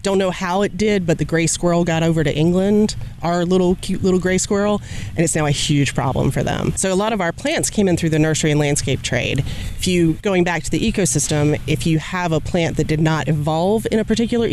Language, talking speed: English, 250 wpm